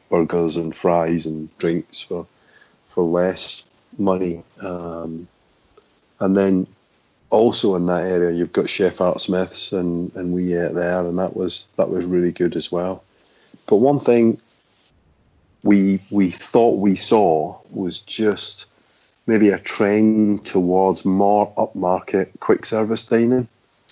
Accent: British